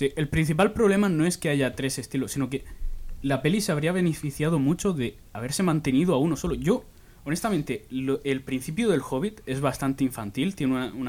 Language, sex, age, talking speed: Spanish, male, 20-39, 200 wpm